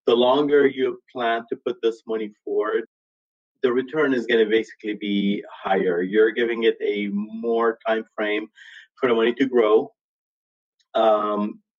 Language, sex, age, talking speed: English, male, 30-49, 155 wpm